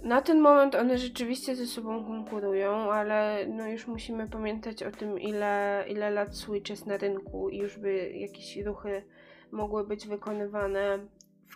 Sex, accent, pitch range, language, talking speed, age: female, native, 200-235 Hz, Polish, 155 wpm, 20-39